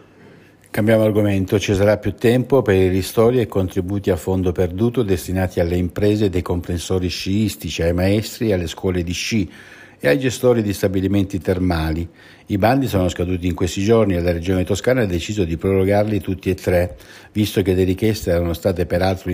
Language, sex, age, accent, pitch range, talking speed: Italian, male, 60-79, native, 90-115 Hz, 175 wpm